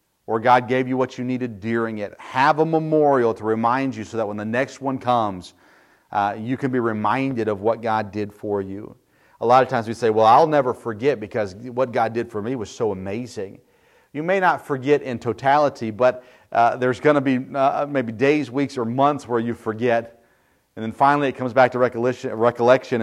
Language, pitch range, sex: English, 105-130 Hz, male